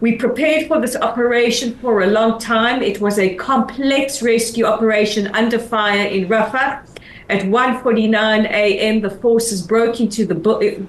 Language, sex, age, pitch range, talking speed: English, female, 50-69, 200-230 Hz, 160 wpm